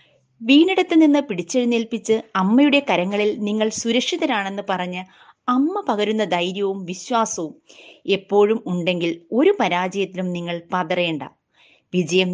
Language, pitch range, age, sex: Malayalam, 185-250 Hz, 30-49, female